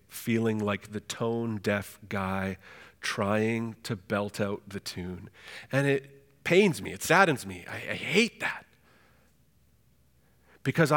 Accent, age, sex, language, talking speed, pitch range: American, 40-59, male, English, 125 wpm, 110-135 Hz